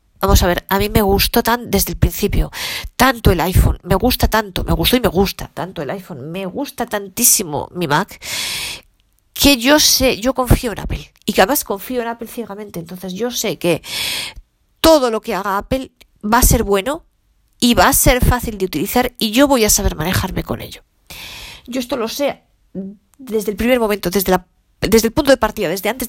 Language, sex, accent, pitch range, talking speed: Spanish, female, Spanish, 170-235 Hz, 205 wpm